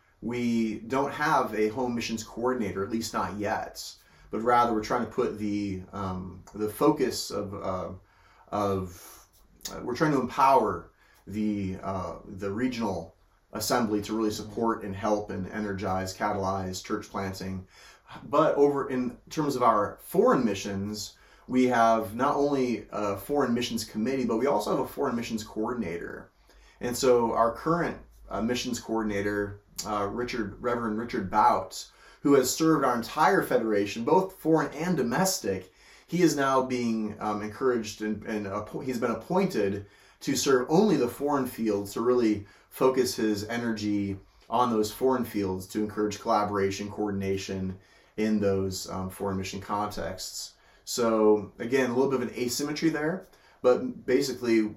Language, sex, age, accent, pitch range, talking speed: English, male, 30-49, American, 100-120 Hz, 150 wpm